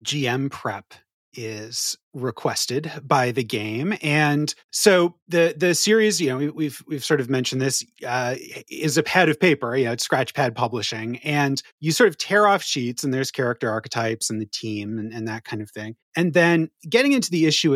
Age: 30-49